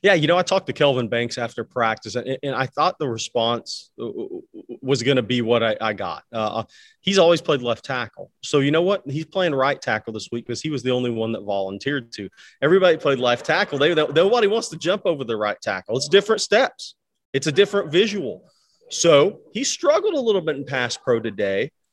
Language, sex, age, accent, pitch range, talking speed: English, male, 30-49, American, 115-155 Hz, 220 wpm